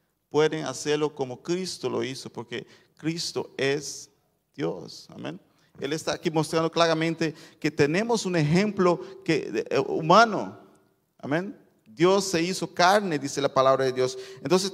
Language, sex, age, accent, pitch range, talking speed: Spanish, male, 40-59, Venezuelan, 130-175 Hz, 130 wpm